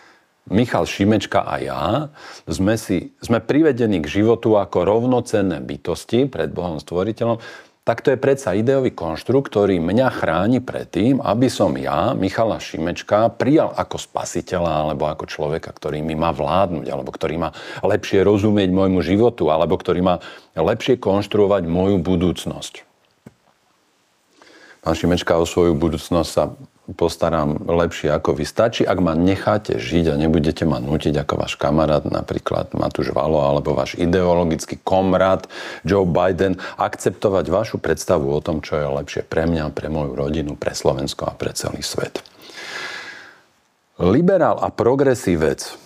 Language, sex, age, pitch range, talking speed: Slovak, male, 50-69, 80-100 Hz, 140 wpm